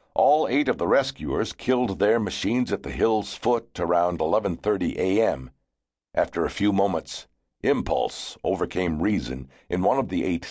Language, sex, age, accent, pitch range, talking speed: English, male, 60-79, American, 65-110 Hz, 155 wpm